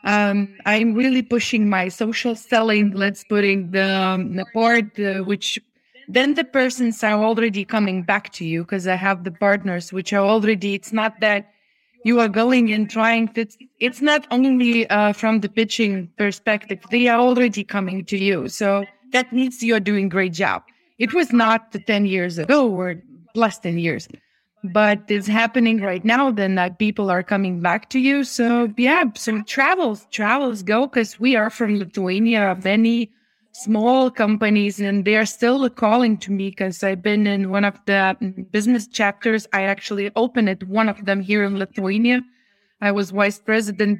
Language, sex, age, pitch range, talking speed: English, female, 20-39, 195-230 Hz, 180 wpm